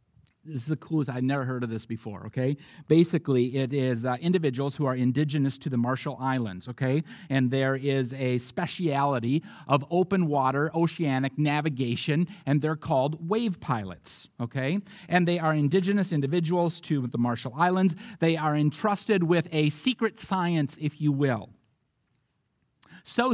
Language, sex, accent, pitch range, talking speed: English, male, American, 140-190 Hz, 155 wpm